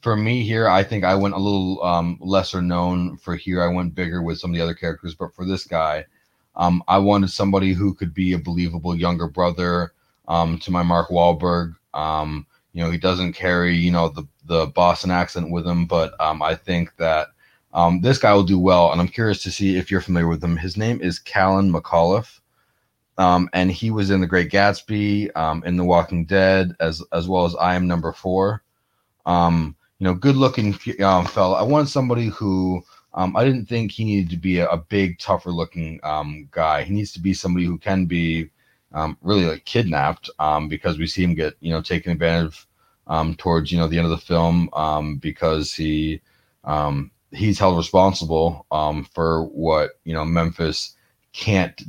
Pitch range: 85-95 Hz